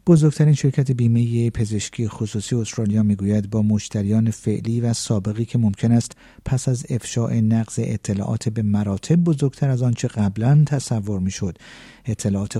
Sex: male